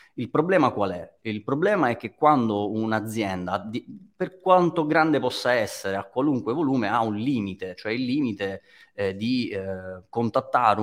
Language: Italian